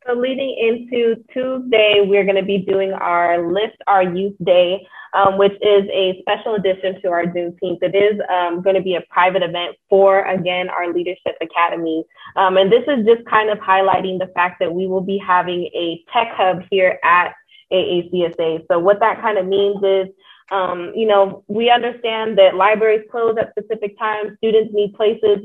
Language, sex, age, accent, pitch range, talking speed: English, female, 20-39, American, 180-210 Hz, 190 wpm